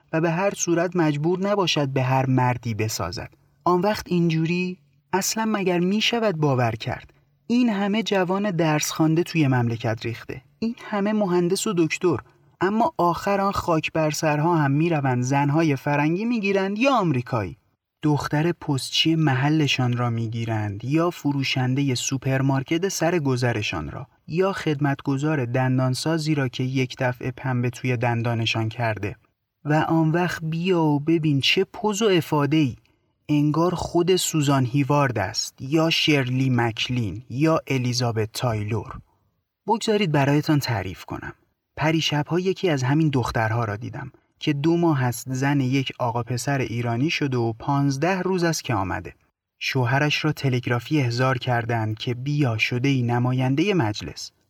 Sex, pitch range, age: male, 125-165 Hz, 30-49